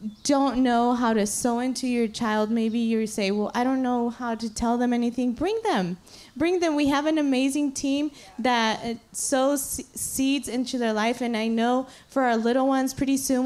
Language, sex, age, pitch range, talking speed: English, female, 20-39, 235-280 Hz, 195 wpm